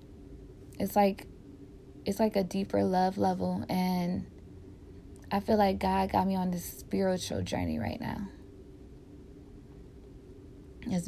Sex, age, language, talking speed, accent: female, 20-39, English, 120 wpm, American